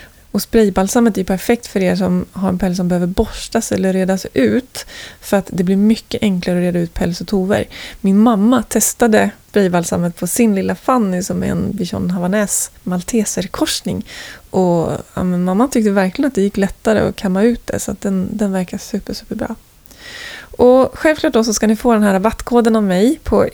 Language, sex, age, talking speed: Swedish, female, 20-39, 195 wpm